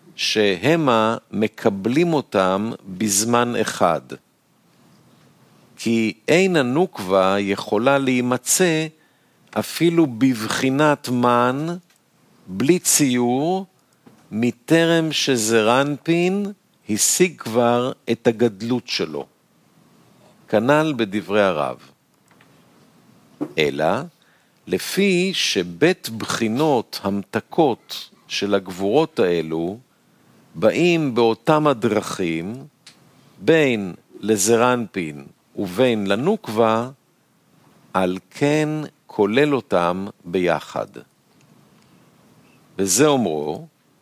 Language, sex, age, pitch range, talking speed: Hebrew, male, 50-69, 105-150 Hz, 65 wpm